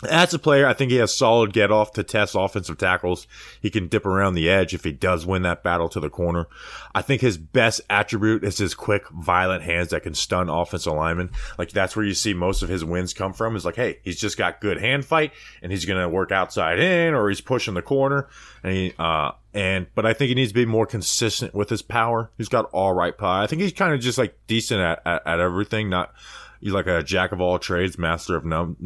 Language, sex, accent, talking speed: English, male, American, 245 wpm